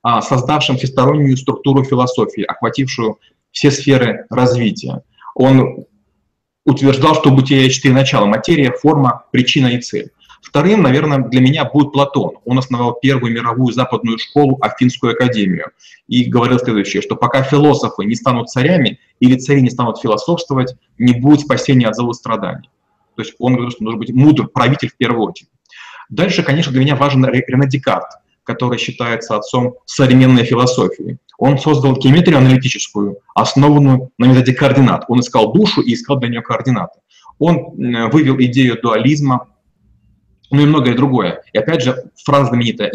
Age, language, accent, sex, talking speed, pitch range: 30-49, Russian, native, male, 150 wpm, 120-140 Hz